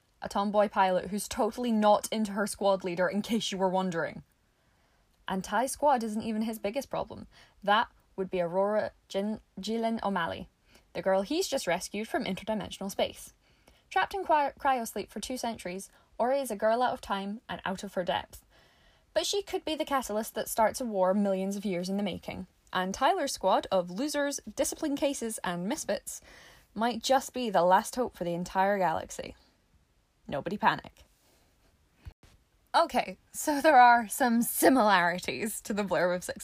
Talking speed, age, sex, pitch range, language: 170 wpm, 10-29, female, 185-245 Hz, English